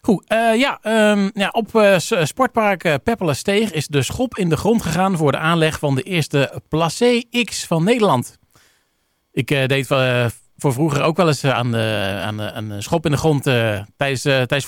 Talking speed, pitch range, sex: 190 wpm, 135-190 Hz, male